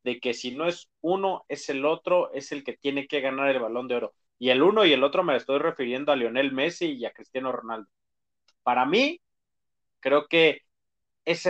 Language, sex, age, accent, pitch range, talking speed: Spanish, male, 30-49, Mexican, 130-165 Hz, 210 wpm